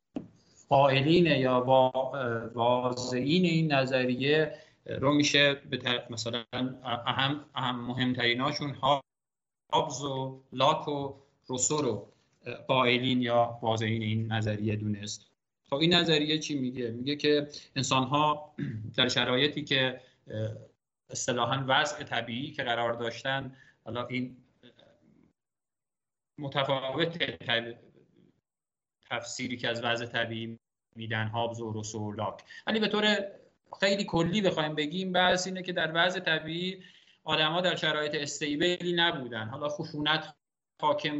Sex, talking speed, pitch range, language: male, 115 wpm, 125-160 Hz, Persian